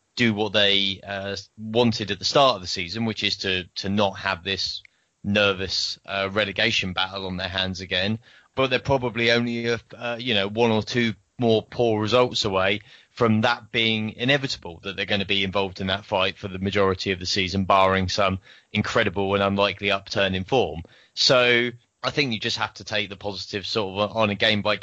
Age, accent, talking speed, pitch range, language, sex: 20-39, British, 200 wpm, 100-115 Hz, English, male